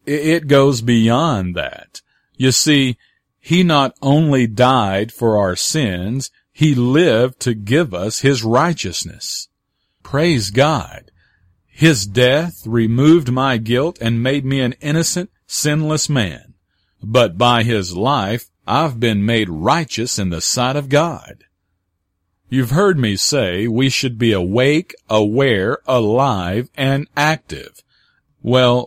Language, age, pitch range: English, 40-59, 110-140 Hz